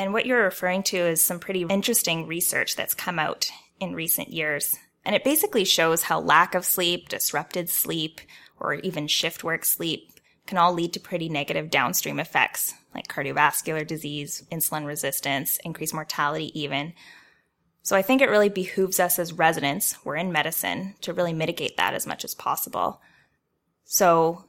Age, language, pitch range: 10-29, English, 155-185 Hz